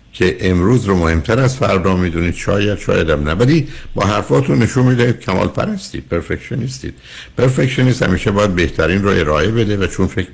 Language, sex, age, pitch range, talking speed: Persian, male, 60-79, 75-110 Hz, 150 wpm